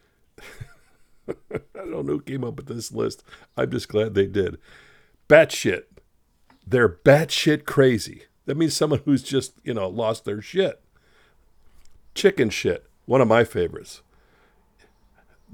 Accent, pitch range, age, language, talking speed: American, 105-150 Hz, 50-69, English, 135 wpm